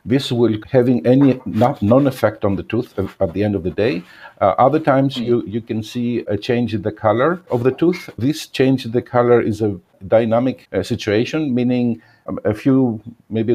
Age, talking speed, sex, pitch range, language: 50-69, 190 wpm, male, 105-125 Hz, English